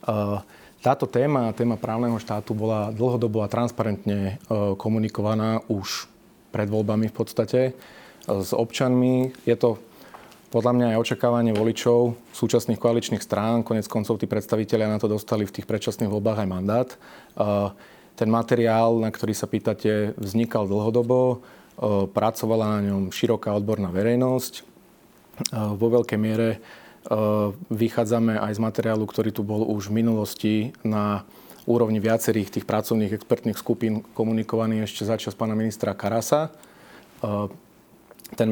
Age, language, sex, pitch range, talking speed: 30-49, Slovak, male, 105-115 Hz, 130 wpm